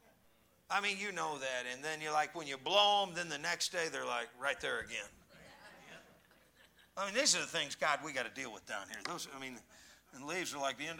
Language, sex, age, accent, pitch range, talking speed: English, male, 50-69, American, 185-270 Hz, 250 wpm